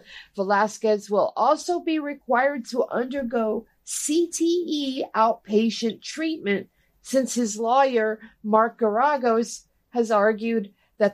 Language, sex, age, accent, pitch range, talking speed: English, female, 50-69, American, 195-245 Hz, 95 wpm